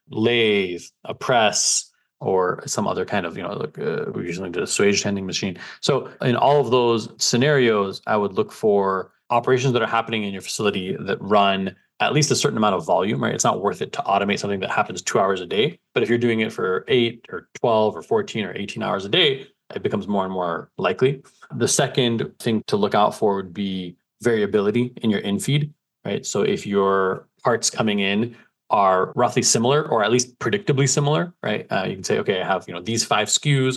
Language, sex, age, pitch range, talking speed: English, male, 20-39, 105-140 Hz, 215 wpm